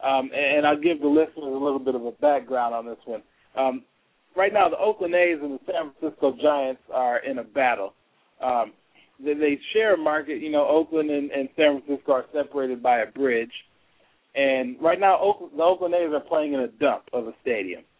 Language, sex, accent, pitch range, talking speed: English, male, American, 130-155 Hz, 205 wpm